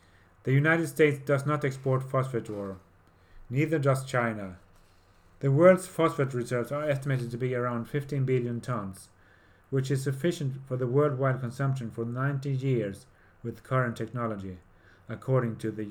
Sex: male